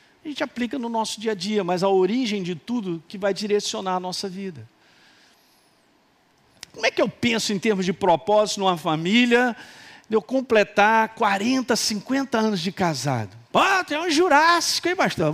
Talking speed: 175 wpm